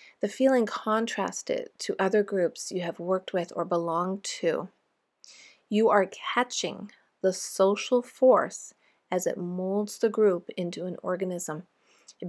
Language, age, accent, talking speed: English, 30-49, American, 135 wpm